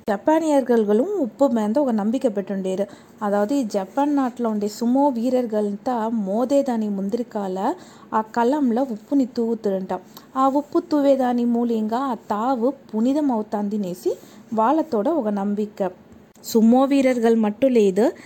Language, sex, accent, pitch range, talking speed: Telugu, female, native, 210-250 Hz, 110 wpm